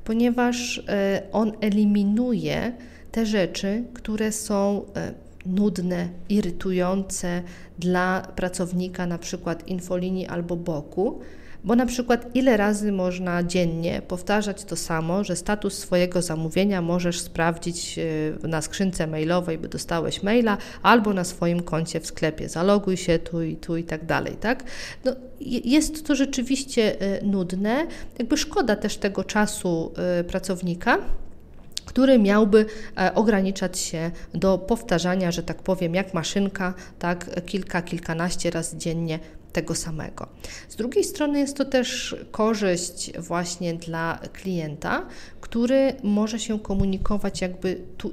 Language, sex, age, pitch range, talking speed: Polish, female, 40-59, 175-220 Hz, 120 wpm